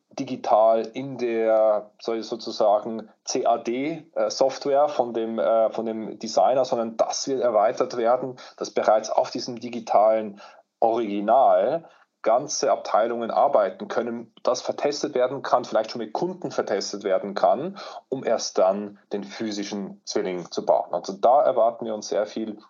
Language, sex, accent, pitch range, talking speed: German, male, German, 110-125 Hz, 130 wpm